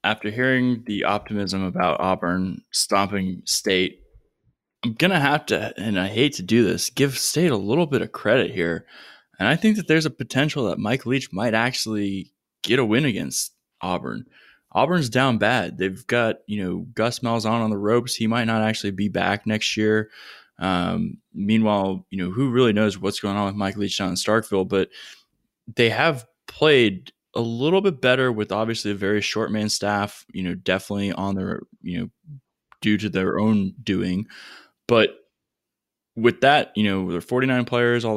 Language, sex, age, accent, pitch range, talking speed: English, male, 20-39, American, 100-120 Hz, 185 wpm